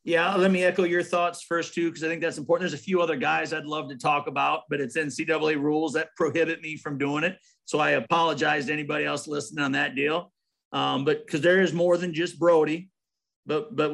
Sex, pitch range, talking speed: male, 140-165 Hz, 235 wpm